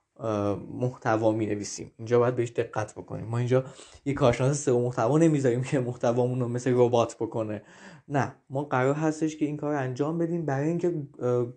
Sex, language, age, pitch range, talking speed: male, Persian, 20-39, 120-155 Hz, 160 wpm